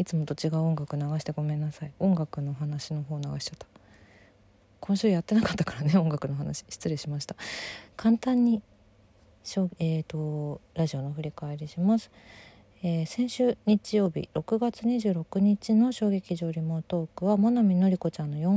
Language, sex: Japanese, female